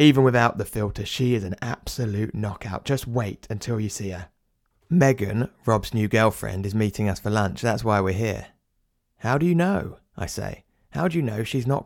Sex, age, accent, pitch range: male, 20-39, British, 105-140 Hz